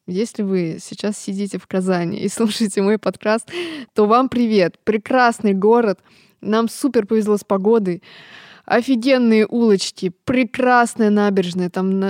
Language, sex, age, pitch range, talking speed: Russian, female, 20-39, 185-230 Hz, 125 wpm